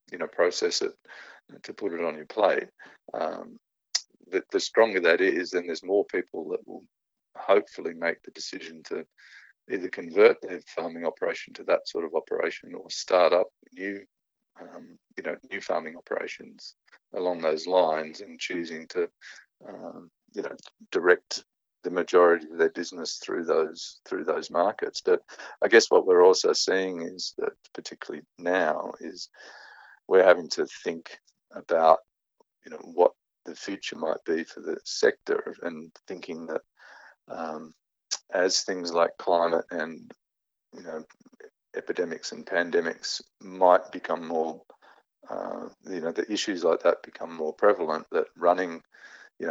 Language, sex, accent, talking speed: English, male, Australian, 150 wpm